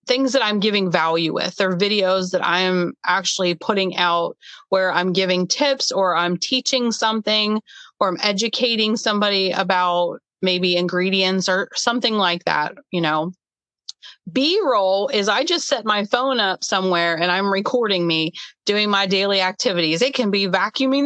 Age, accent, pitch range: 30-49, American, 185-250 Hz